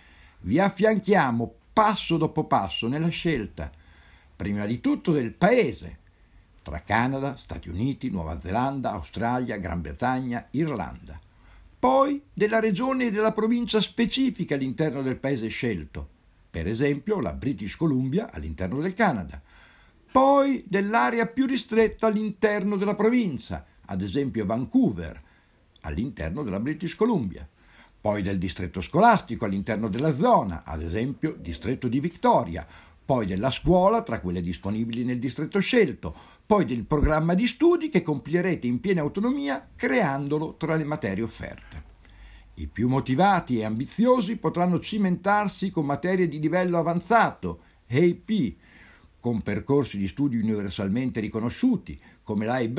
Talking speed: 125 wpm